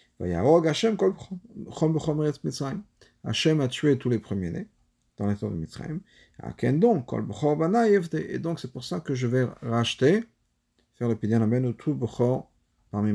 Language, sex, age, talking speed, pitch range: French, male, 50-69, 140 wpm, 115-165 Hz